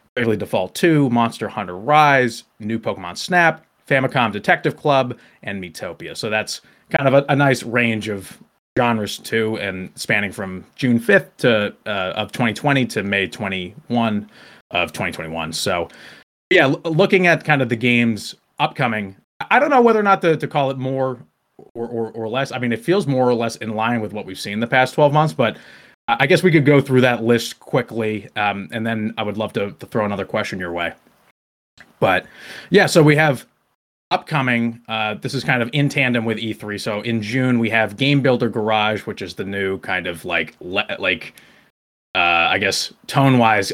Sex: male